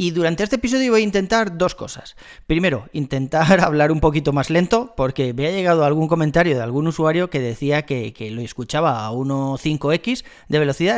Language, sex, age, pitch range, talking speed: Spanish, male, 30-49, 135-170 Hz, 190 wpm